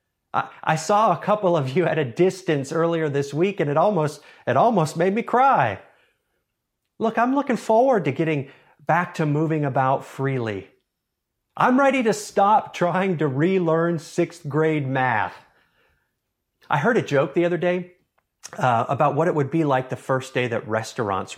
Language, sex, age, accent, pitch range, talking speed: English, male, 30-49, American, 120-170 Hz, 170 wpm